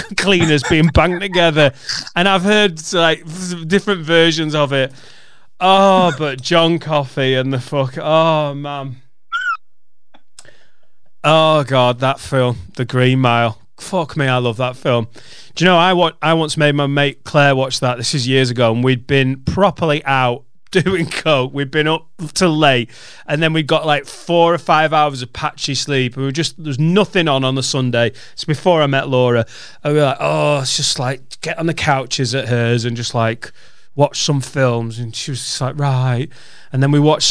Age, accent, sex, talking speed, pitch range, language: 30-49, British, male, 190 wpm, 125-160 Hz, English